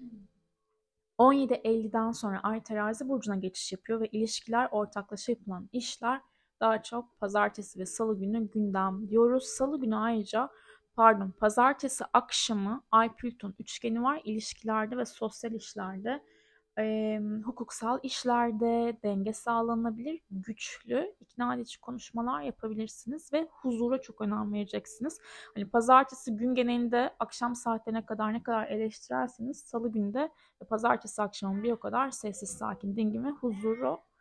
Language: Turkish